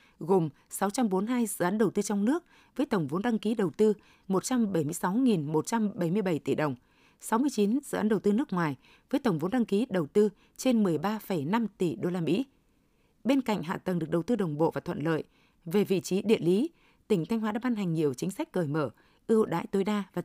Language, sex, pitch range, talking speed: Vietnamese, female, 175-230 Hz, 210 wpm